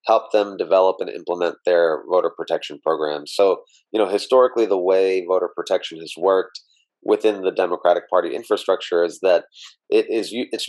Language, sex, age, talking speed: English, male, 30-49, 170 wpm